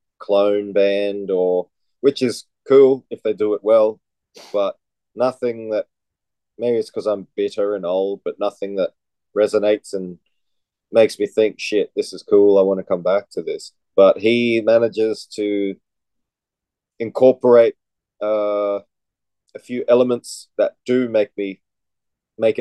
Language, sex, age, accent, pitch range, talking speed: English, male, 30-49, Australian, 100-120 Hz, 145 wpm